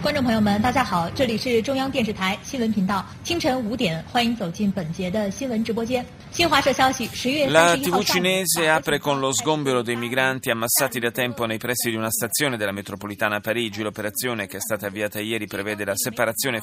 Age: 30-49